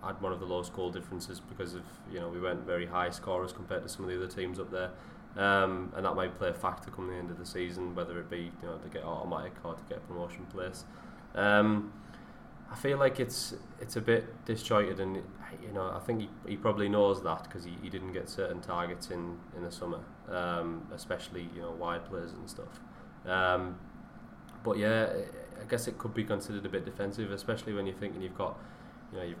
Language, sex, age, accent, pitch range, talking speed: English, male, 20-39, British, 90-105 Hz, 225 wpm